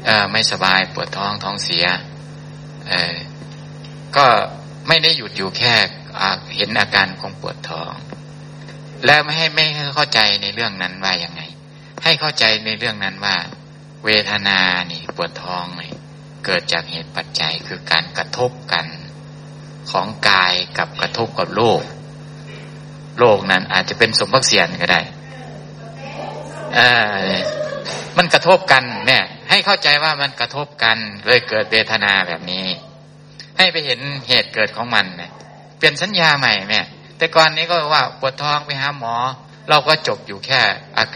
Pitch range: 110-150 Hz